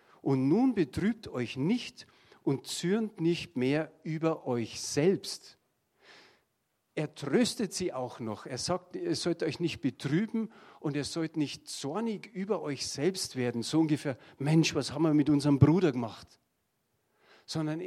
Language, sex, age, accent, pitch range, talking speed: German, male, 50-69, German, 125-170 Hz, 150 wpm